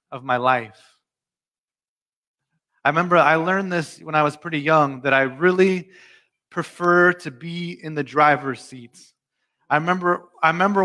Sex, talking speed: male, 150 wpm